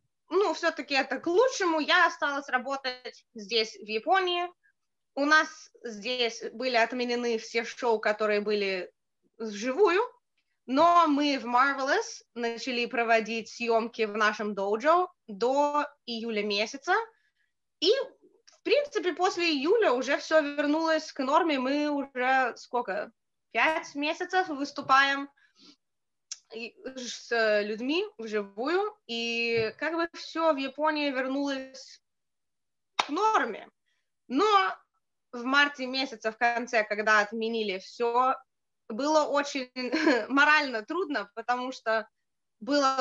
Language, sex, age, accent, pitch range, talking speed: Russian, female, 20-39, native, 230-320 Hz, 110 wpm